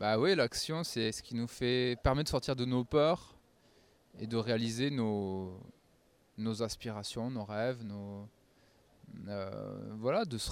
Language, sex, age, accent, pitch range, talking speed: French, male, 20-39, French, 105-135 Hz, 160 wpm